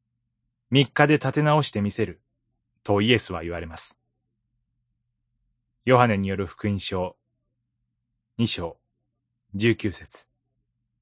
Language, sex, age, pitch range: Japanese, male, 30-49, 115-125 Hz